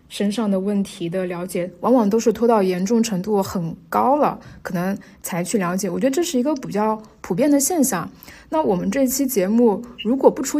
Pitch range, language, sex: 195-250 Hz, Chinese, female